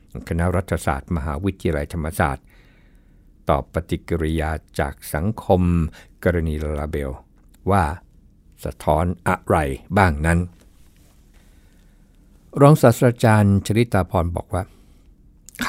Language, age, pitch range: Thai, 60-79, 75-100 Hz